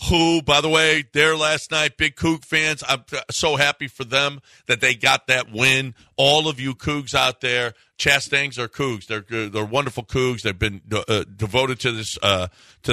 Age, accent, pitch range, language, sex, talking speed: 50-69, American, 100-125 Hz, English, male, 190 wpm